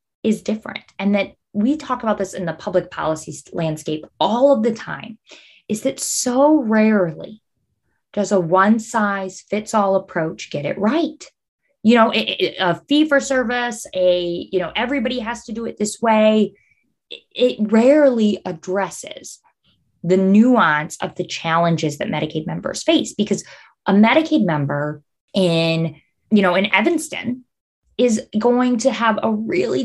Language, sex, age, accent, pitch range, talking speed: English, female, 20-39, American, 180-230 Hz, 150 wpm